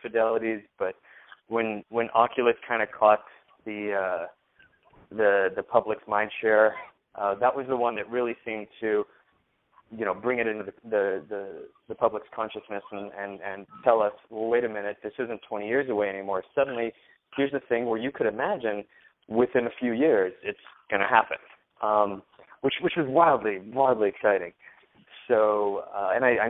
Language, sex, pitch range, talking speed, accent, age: English, male, 105-125 Hz, 175 wpm, American, 20-39